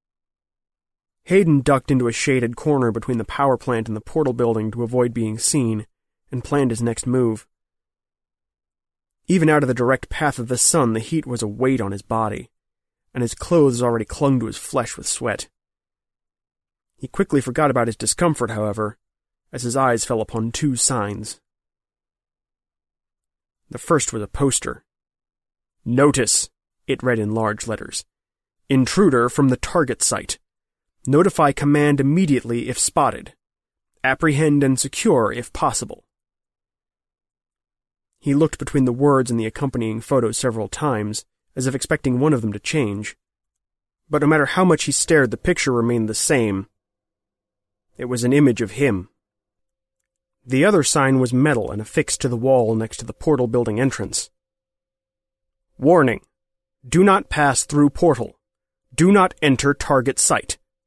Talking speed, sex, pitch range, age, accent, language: 150 wpm, male, 105-140 Hz, 30-49, American, English